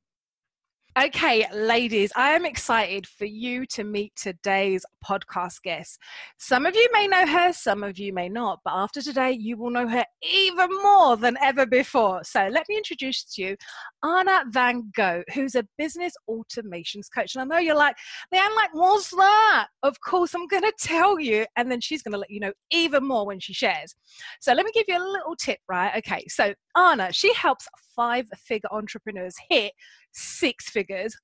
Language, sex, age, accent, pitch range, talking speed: English, female, 20-39, British, 210-335 Hz, 185 wpm